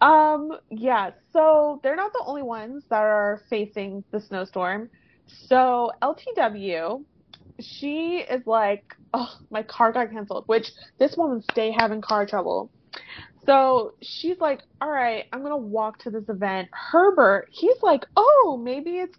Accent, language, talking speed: American, English, 145 wpm